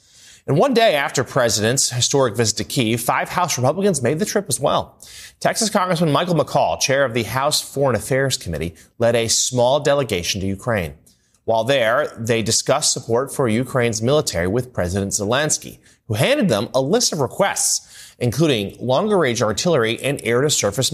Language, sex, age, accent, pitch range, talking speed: English, male, 30-49, American, 105-140 Hz, 165 wpm